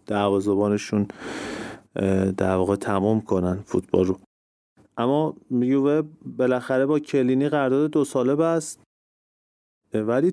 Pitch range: 115-145 Hz